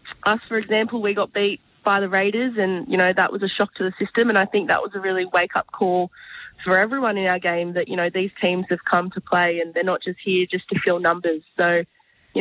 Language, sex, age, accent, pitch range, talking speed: English, female, 20-39, Australian, 175-200 Hz, 255 wpm